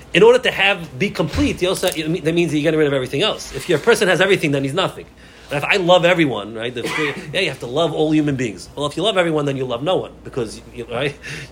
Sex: male